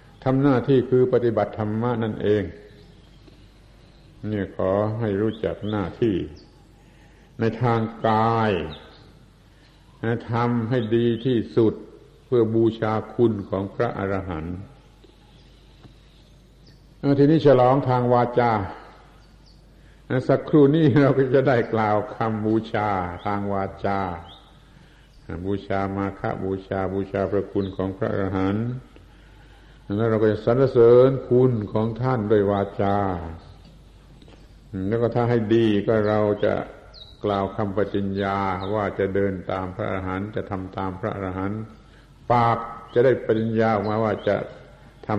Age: 70-89